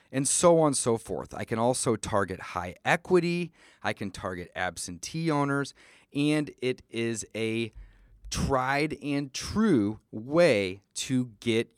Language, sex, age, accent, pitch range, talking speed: English, male, 30-49, American, 110-160 Hz, 140 wpm